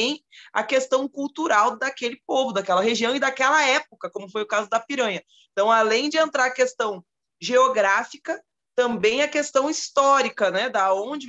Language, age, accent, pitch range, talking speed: Portuguese, 20-39, Brazilian, 210-270 Hz, 160 wpm